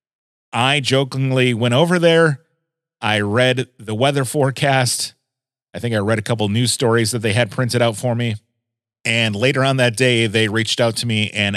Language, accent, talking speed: English, American, 190 wpm